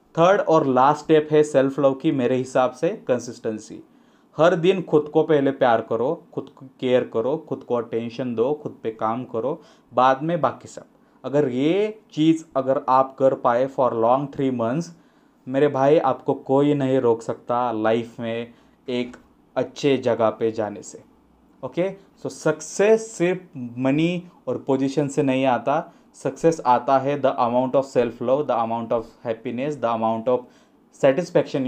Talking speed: 165 wpm